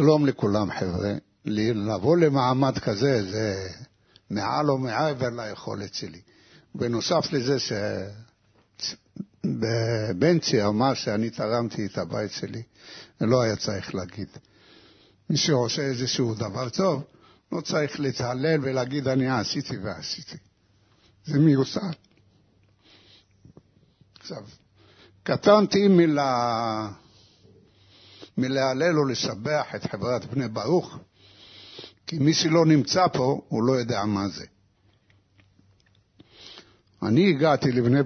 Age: 60-79